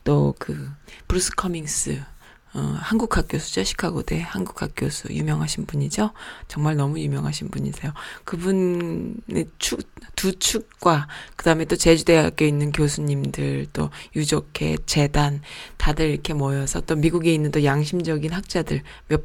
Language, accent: Korean, native